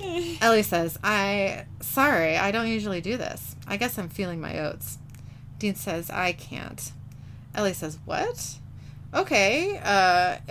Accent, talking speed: American, 135 wpm